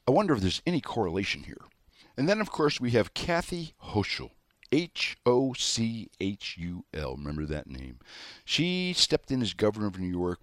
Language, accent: English, American